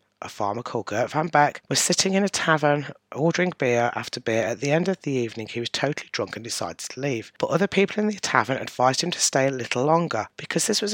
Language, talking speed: English, 245 wpm